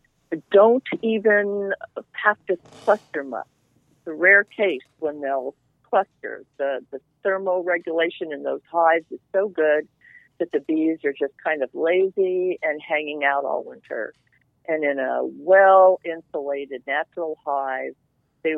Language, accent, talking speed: English, American, 140 wpm